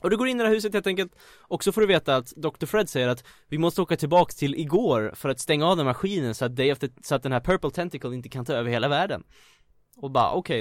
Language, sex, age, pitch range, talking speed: Swedish, male, 20-39, 115-165 Hz, 290 wpm